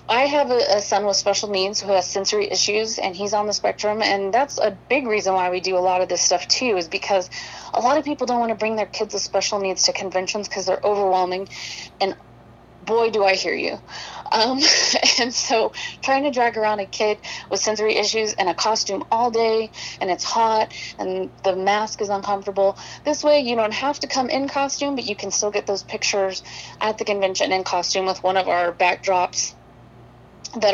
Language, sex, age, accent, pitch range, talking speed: English, female, 30-49, American, 195-245 Hz, 210 wpm